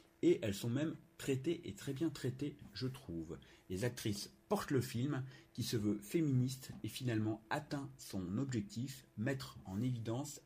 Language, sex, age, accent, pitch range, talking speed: French, male, 50-69, French, 100-140 Hz, 160 wpm